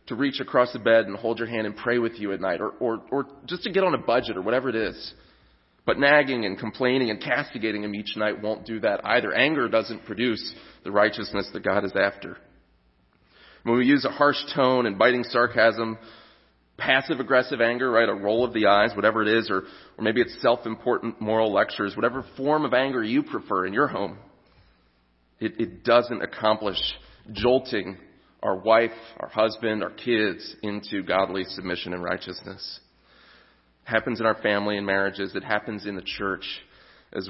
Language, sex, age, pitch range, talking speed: English, male, 30-49, 95-120 Hz, 180 wpm